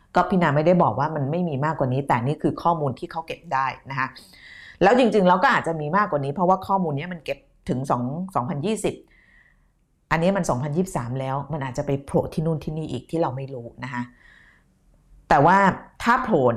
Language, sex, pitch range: Thai, female, 140-185 Hz